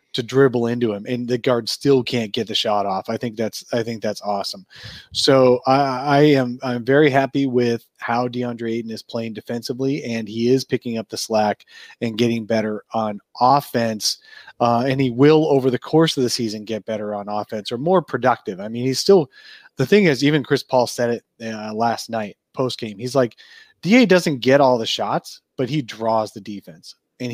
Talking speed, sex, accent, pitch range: 205 wpm, male, American, 110-135 Hz